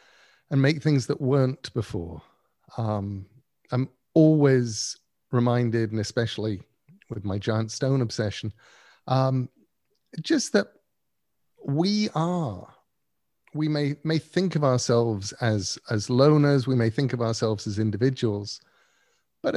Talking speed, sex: 120 wpm, male